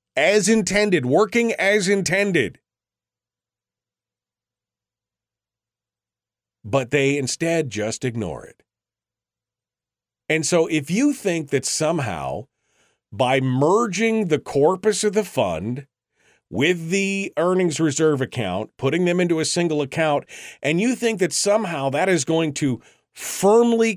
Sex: male